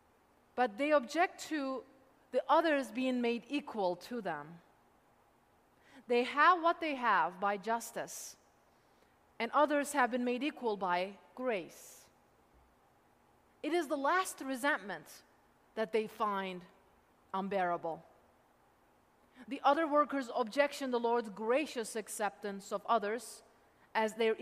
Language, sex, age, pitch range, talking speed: English, female, 30-49, 215-285 Hz, 120 wpm